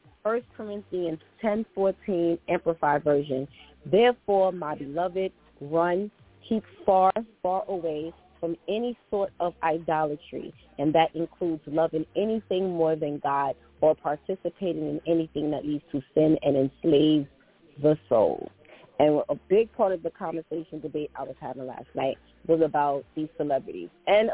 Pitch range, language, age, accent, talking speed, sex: 155-200 Hz, English, 30-49, American, 140 wpm, female